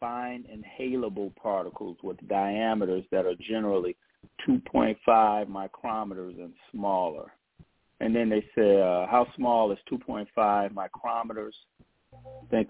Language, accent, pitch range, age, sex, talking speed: English, American, 95-110 Hz, 40-59, male, 110 wpm